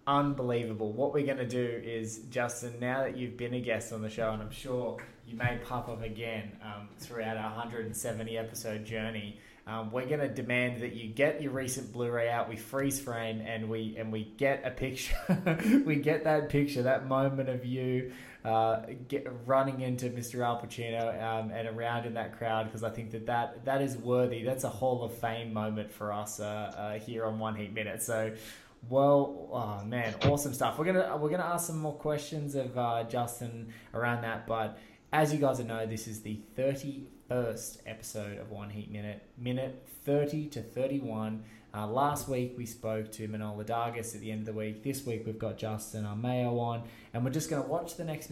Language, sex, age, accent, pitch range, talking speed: English, male, 20-39, Australian, 110-135 Hz, 200 wpm